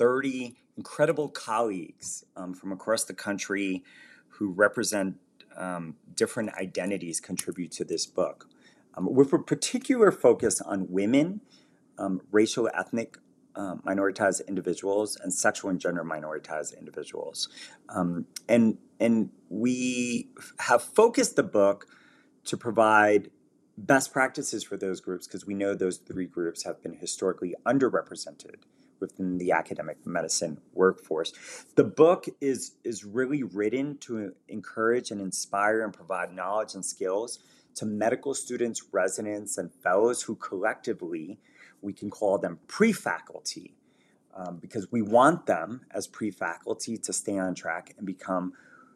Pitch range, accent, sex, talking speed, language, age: 95-125 Hz, American, male, 130 wpm, English, 30-49